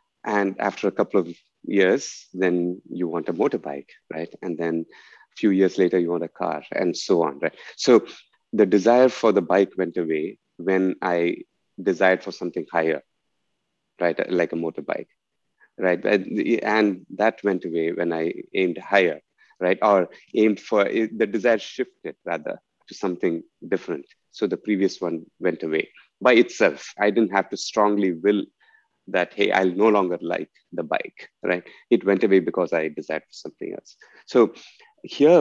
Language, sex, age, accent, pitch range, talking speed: English, male, 30-49, Indian, 90-110 Hz, 165 wpm